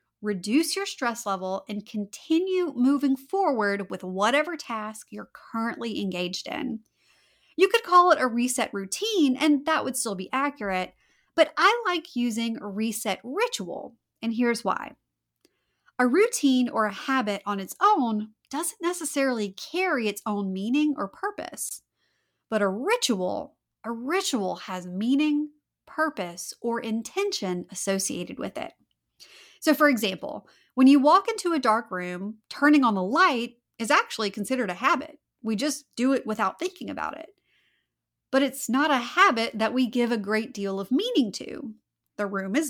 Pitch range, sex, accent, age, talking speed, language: 210-300 Hz, female, American, 30-49, 155 wpm, English